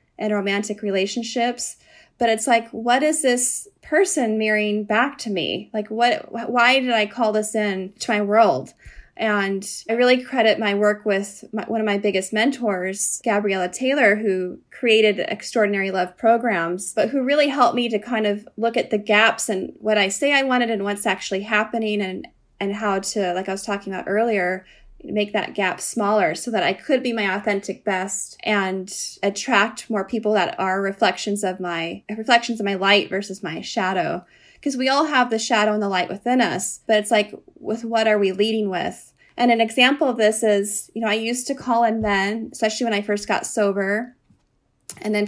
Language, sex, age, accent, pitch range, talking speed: English, female, 20-39, American, 200-235 Hz, 195 wpm